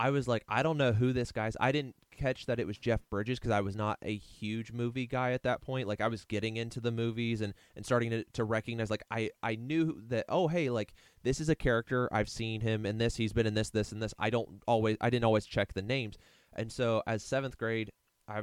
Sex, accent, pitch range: male, American, 100-120 Hz